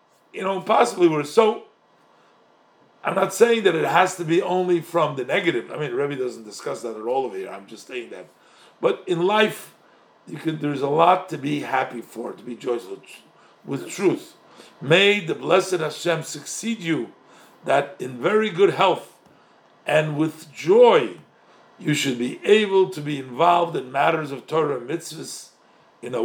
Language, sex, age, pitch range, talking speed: English, male, 50-69, 145-185 Hz, 180 wpm